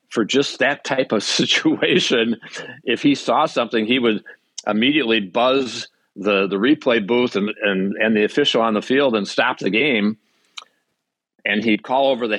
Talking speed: 165 wpm